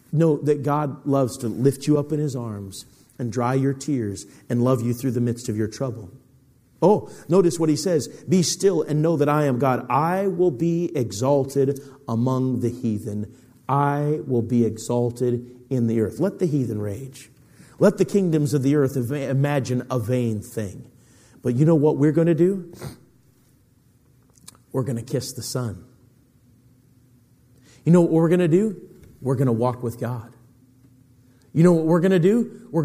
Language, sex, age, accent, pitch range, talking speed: English, male, 50-69, American, 125-165 Hz, 185 wpm